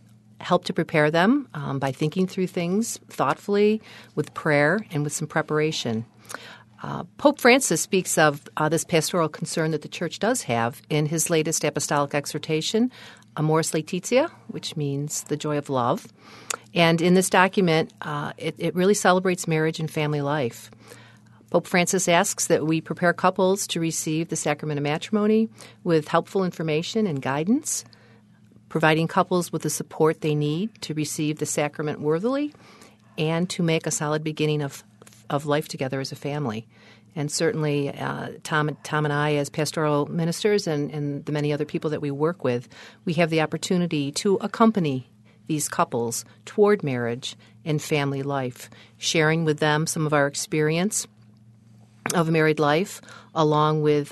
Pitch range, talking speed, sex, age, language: 145-170 Hz, 160 wpm, female, 50-69, English